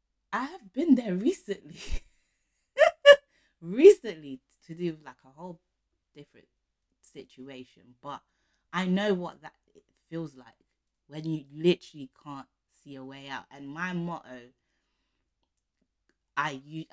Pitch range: 130-160 Hz